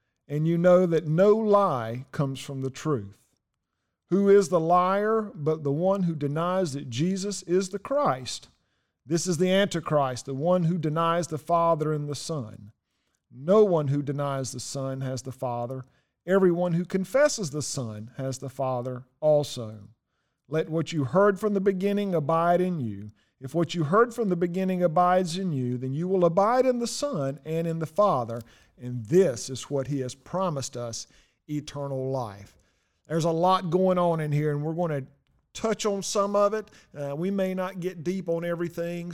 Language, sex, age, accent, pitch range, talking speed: English, male, 50-69, American, 135-185 Hz, 185 wpm